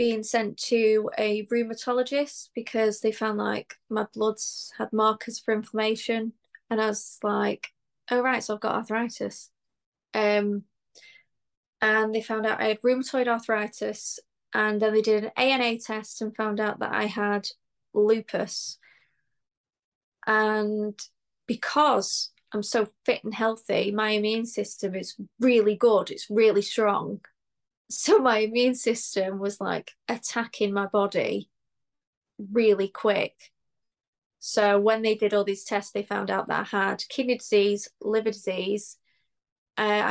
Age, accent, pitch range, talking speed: 20-39, British, 210-225 Hz, 140 wpm